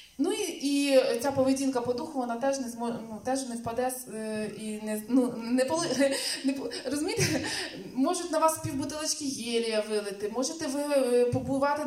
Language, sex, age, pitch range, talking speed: Russian, female, 20-39, 225-290 Hz, 110 wpm